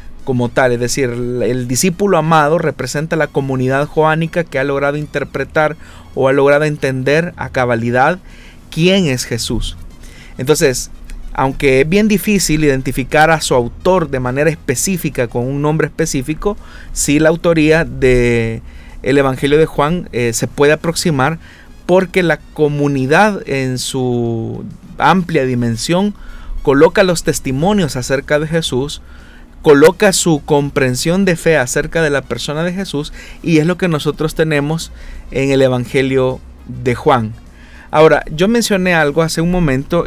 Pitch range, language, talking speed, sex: 125-160 Hz, Spanish, 140 wpm, male